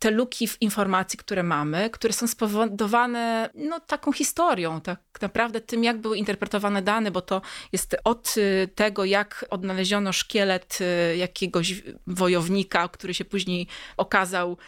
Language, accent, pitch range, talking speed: Polish, native, 180-225 Hz, 130 wpm